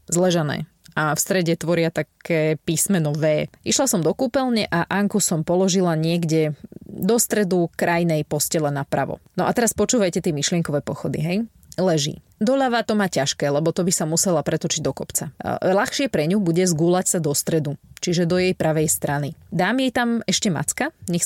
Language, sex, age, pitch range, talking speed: Slovak, female, 20-39, 160-190 Hz, 175 wpm